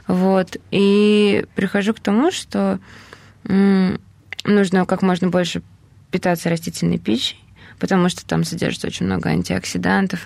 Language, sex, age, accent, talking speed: Russian, female, 20-39, native, 125 wpm